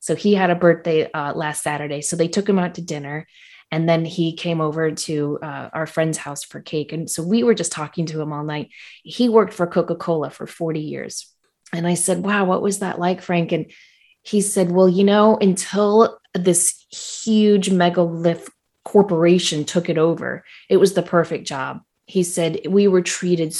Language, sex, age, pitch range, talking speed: English, female, 30-49, 160-195 Hz, 195 wpm